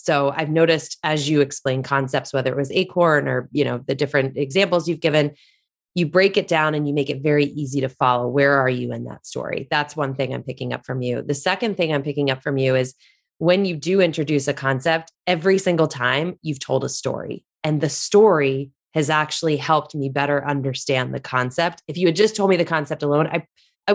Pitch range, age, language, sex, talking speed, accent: 140-170 Hz, 20-39, English, female, 225 wpm, American